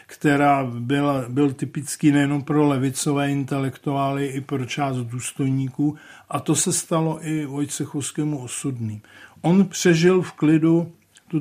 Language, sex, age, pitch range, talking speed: Czech, male, 50-69, 130-150 Hz, 120 wpm